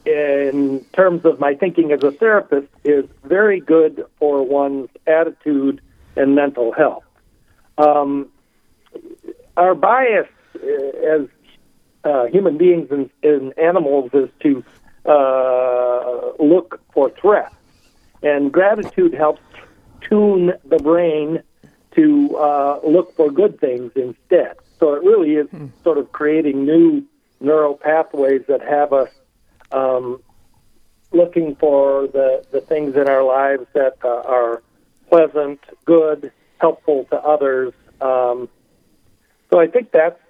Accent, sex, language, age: American, male, English, 60-79